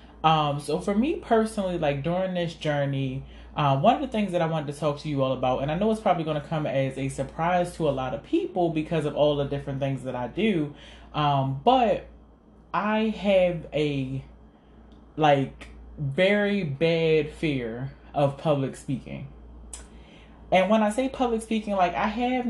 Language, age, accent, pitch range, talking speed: English, 20-39, American, 140-180 Hz, 185 wpm